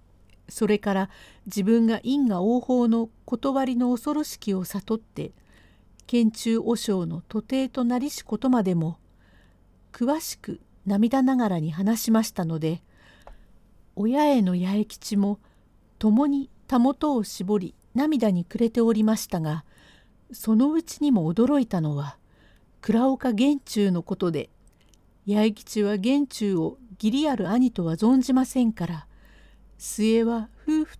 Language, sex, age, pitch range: Japanese, female, 50-69, 185-250 Hz